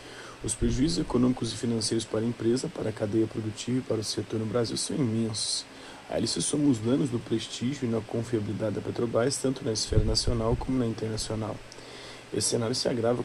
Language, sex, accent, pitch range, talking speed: Portuguese, male, Brazilian, 110-125 Hz, 195 wpm